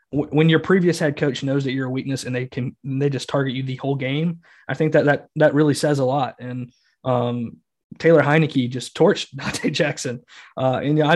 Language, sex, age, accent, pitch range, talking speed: English, male, 20-39, American, 130-145 Hz, 220 wpm